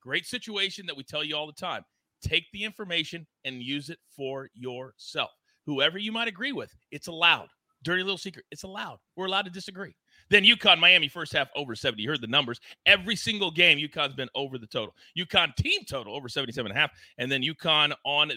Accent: American